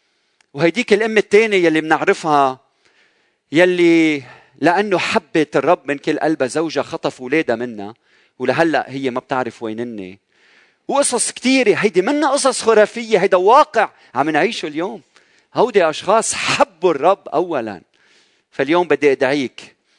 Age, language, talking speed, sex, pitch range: 40-59, Arabic, 125 wpm, male, 125-200 Hz